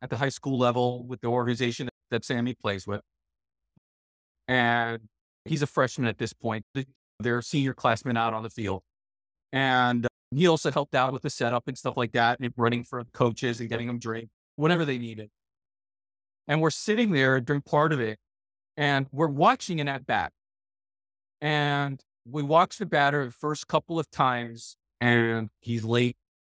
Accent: American